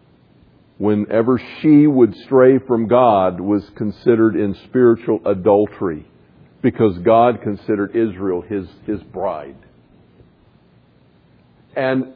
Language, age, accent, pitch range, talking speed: English, 50-69, American, 100-130 Hz, 95 wpm